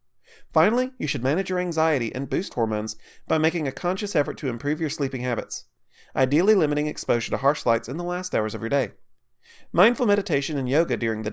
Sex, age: male, 30-49